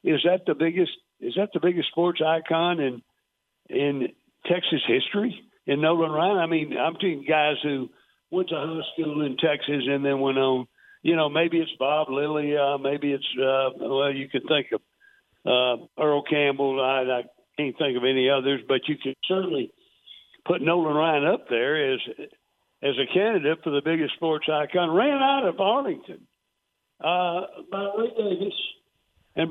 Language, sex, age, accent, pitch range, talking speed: English, male, 60-79, American, 135-185 Hz, 175 wpm